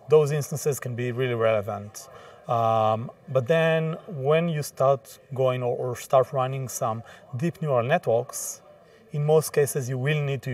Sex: male